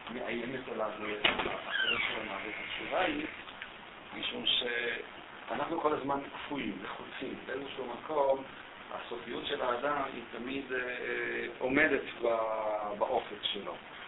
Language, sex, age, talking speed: Hebrew, male, 50-69, 105 wpm